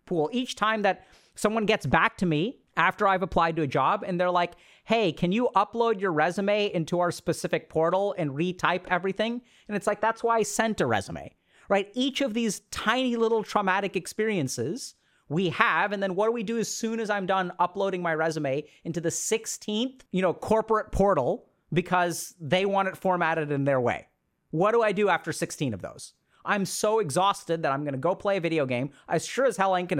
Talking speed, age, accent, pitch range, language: 210 wpm, 30-49, American, 170-220 Hz, English